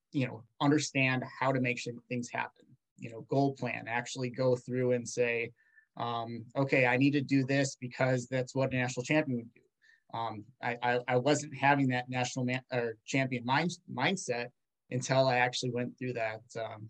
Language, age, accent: English, 20-39, American